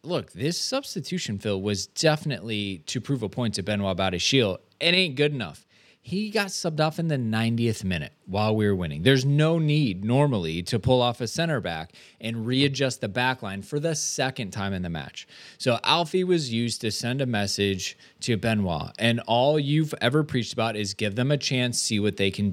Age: 20-39